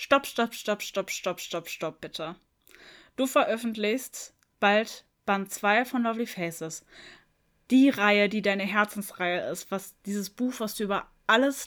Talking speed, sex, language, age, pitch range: 150 wpm, female, German, 10-29, 190-225 Hz